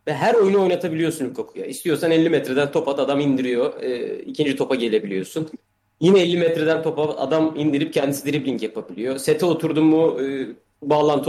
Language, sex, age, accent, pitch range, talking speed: Turkish, male, 30-49, native, 135-170 Hz, 150 wpm